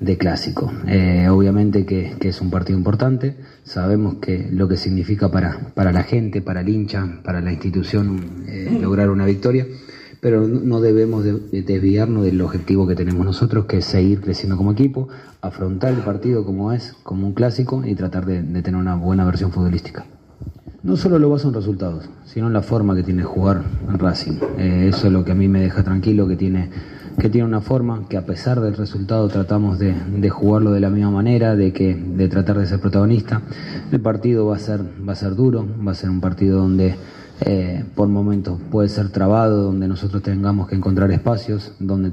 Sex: male